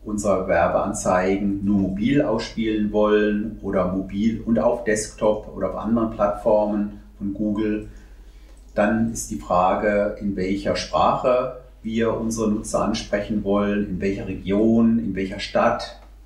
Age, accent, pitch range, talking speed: 40-59, German, 100-115 Hz, 130 wpm